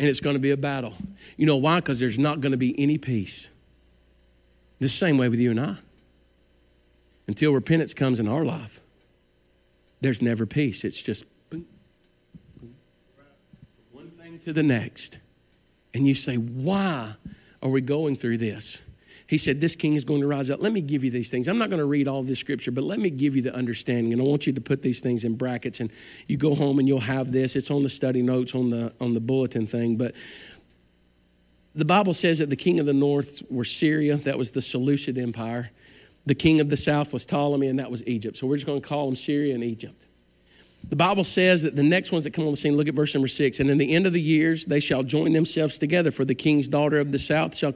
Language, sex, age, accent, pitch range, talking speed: English, male, 50-69, American, 125-160 Hz, 230 wpm